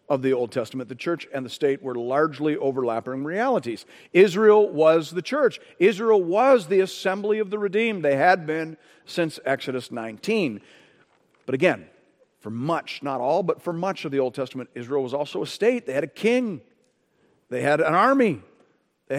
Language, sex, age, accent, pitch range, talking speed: English, male, 50-69, American, 130-185 Hz, 180 wpm